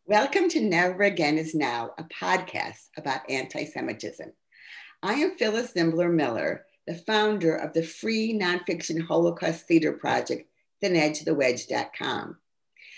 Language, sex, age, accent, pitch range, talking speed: English, female, 50-69, American, 155-195 Hz, 115 wpm